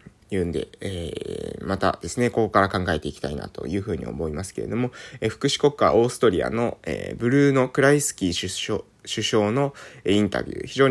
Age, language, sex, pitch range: 20-39, Japanese, male, 100-140 Hz